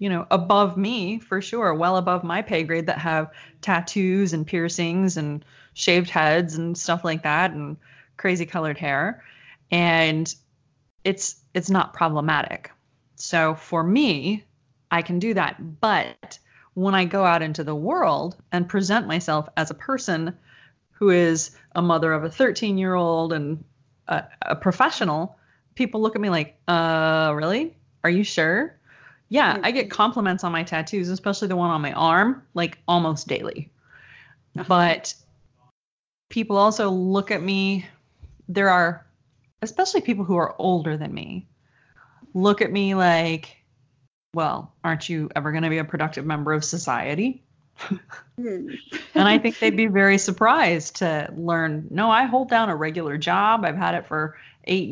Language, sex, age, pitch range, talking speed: English, female, 20-39, 155-195 Hz, 155 wpm